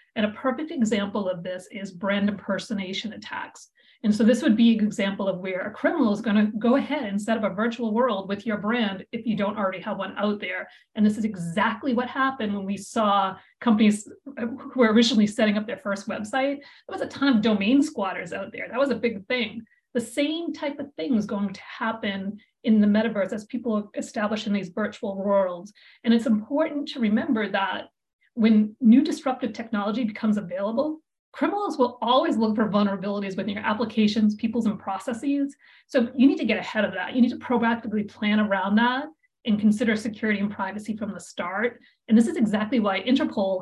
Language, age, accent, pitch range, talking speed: English, 40-59, American, 205-250 Hz, 200 wpm